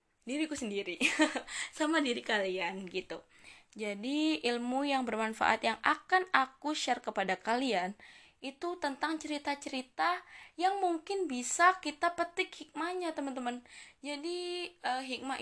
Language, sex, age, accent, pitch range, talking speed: Indonesian, female, 10-29, native, 210-310 Hz, 120 wpm